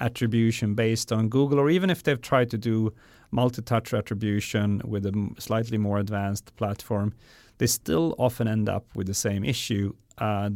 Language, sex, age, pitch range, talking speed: English, male, 30-49, 105-130 Hz, 165 wpm